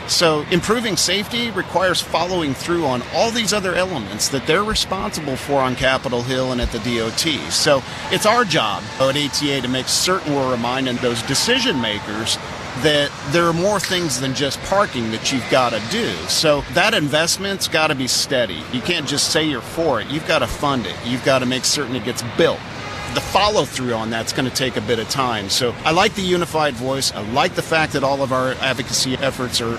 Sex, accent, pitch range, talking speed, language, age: male, American, 125-160 Hz, 210 wpm, English, 40-59